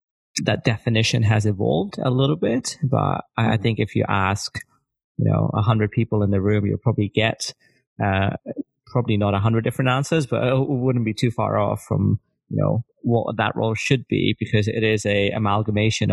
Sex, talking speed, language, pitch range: male, 190 wpm, English, 105-120 Hz